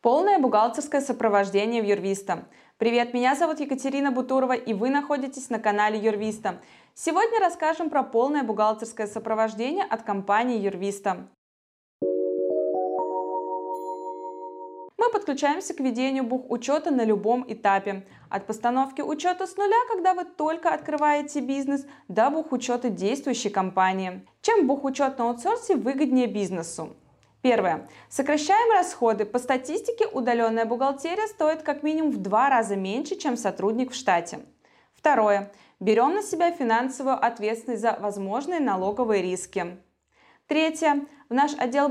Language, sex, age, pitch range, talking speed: Russian, female, 20-39, 205-295 Hz, 120 wpm